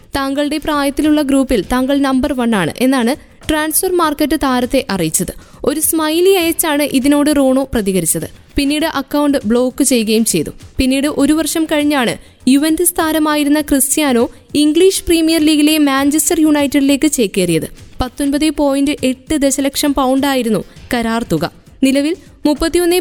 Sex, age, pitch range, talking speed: female, 20-39, 260-315 Hz, 115 wpm